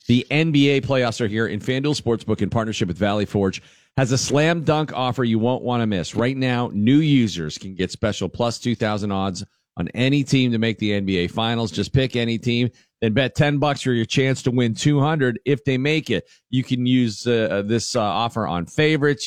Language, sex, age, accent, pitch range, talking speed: English, male, 40-59, American, 105-135 Hz, 210 wpm